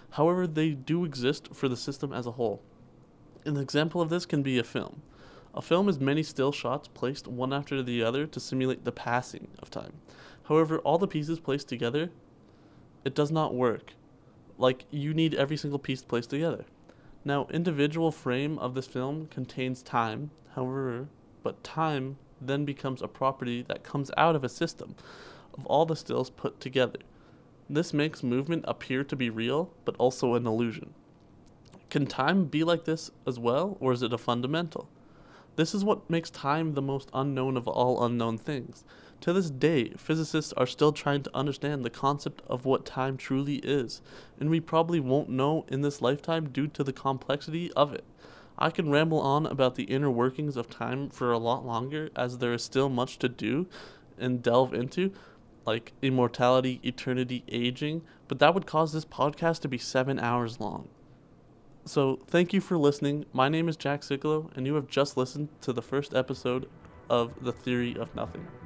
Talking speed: 180 wpm